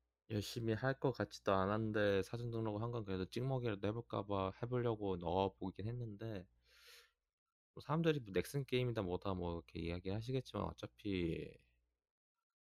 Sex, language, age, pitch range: male, Korean, 20-39, 85-120 Hz